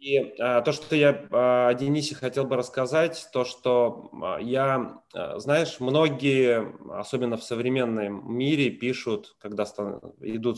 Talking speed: 120 wpm